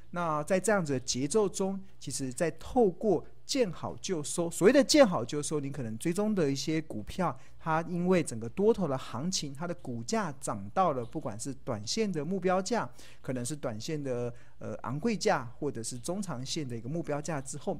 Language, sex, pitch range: Chinese, male, 125-180 Hz